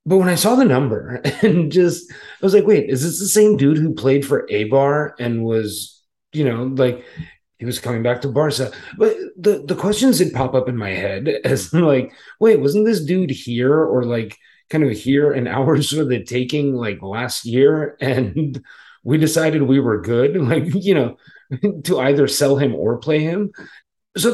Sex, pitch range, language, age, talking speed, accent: male, 115-160 Hz, English, 30-49, 195 wpm, American